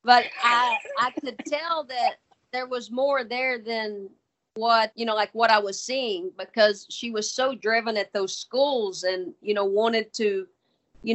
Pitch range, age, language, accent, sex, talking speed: 195-240 Hz, 40-59, English, American, female, 180 wpm